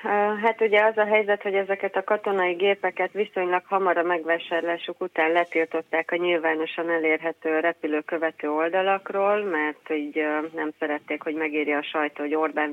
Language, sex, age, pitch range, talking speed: Hungarian, female, 30-49, 160-185 Hz, 145 wpm